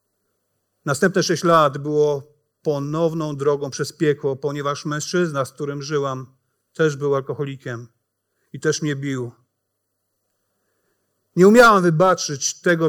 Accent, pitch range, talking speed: native, 125-180 Hz, 110 wpm